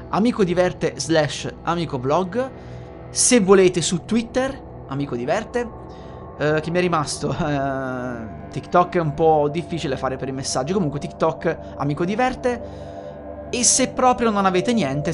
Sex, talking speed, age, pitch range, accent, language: male, 145 wpm, 30-49, 130-190 Hz, native, Italian